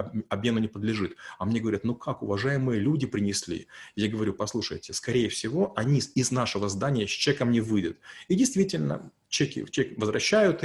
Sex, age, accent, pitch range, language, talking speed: male, 30-49, native, 115-150 Hz, Russian, 165 wpm